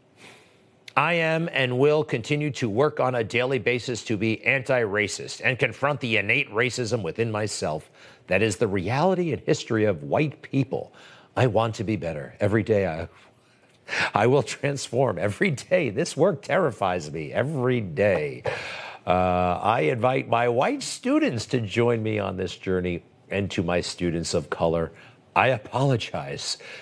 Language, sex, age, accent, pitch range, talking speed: English, male, 50-69, American, 100-130 Hz, 155 wpm